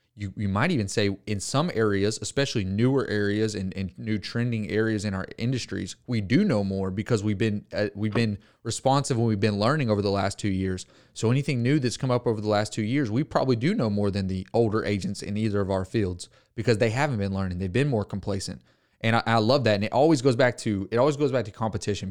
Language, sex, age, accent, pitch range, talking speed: English, male, 30-49, American, 100-120 Hz, 245 wpm